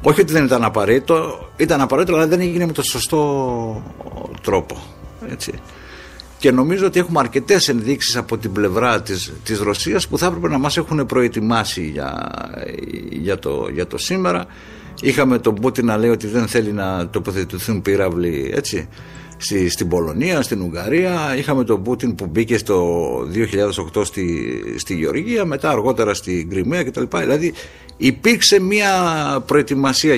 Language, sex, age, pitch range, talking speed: Greek, male, 60-79, 100-140 Hz, 150 wpm